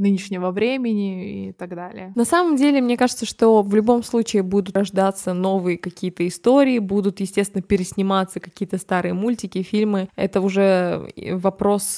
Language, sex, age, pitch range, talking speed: Russian, female, 20-39, 185-215 Hz, 145 wpm